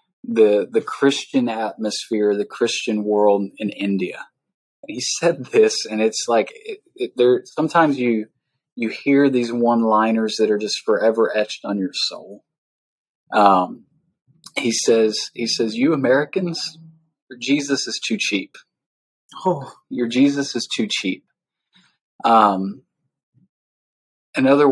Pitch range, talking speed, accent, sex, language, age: 110-150 Hz, 130 wpm, American, male, English, 20-39